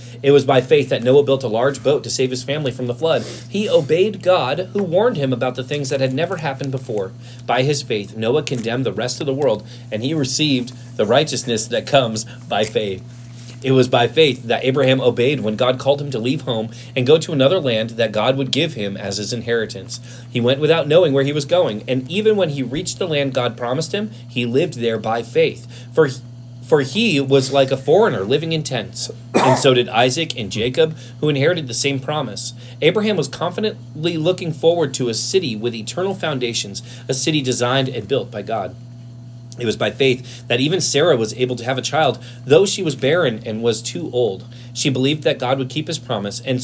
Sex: male